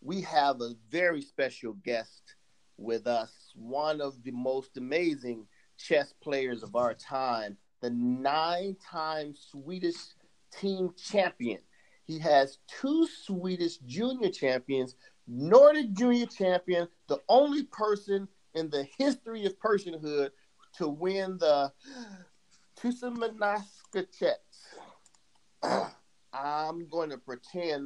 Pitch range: 135-215 Hz